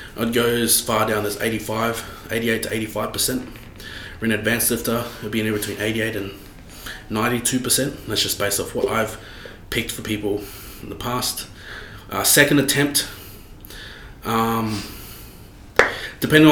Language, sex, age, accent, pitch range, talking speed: English, male, 20-39, Australian, 105-125 Hz, 135 wpm